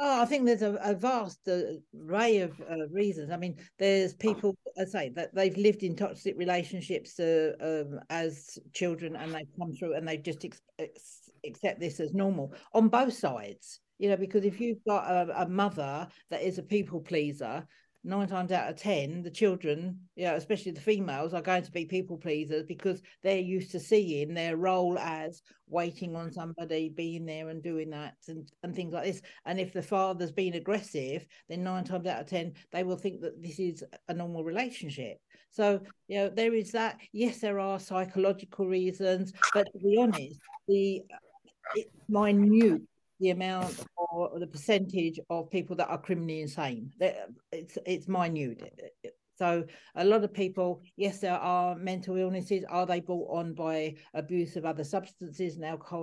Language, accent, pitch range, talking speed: English, British, 165-200 Hz, 180 wpm